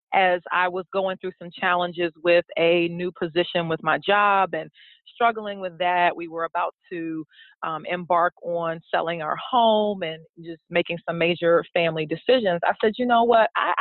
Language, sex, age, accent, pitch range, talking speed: English, female, 30-49, American, 170-195 Hz, 180 wpm